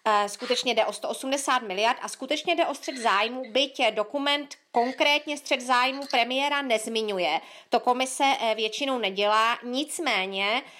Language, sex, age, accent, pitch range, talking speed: Czech, female, 30-49, native, 215-280 Hz, 130 wpm